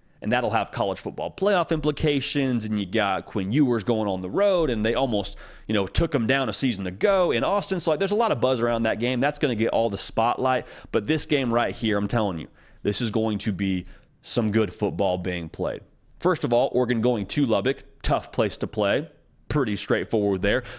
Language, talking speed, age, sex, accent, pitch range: English, 230 wpm, 30-49, male, American, 110-150 Hz